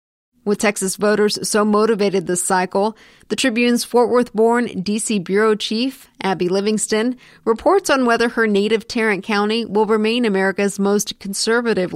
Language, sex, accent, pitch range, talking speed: English, female, American, 195-230 Hz, 140 wpm